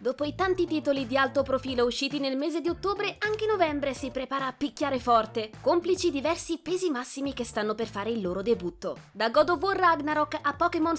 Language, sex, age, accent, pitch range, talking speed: Italian, female, 20-39, native, 225-315 Hz, 200 wpm